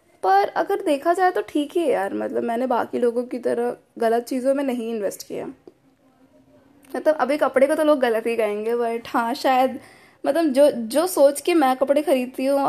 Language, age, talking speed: Hindi, 20-39, 200 wpm